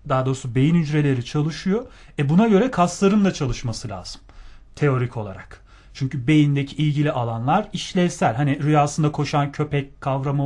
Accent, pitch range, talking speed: native, 135-180 Hz, 140 wpm